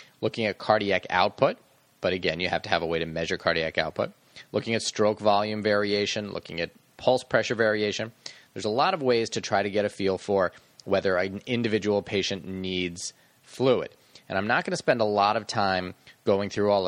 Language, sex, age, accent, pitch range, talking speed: English, male, 30-49, American, 90-105 Hz, 205 wpm